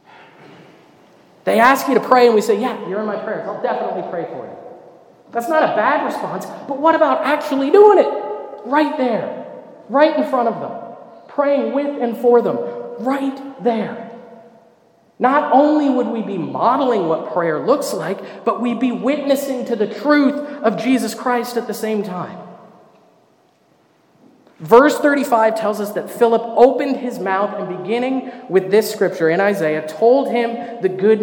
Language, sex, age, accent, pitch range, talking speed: English, male, 40-59, American, 190-260 Hz, 165 wpm